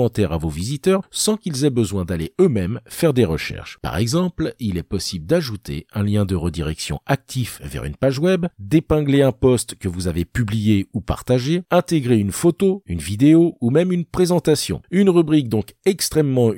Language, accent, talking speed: French, French, 175 wpm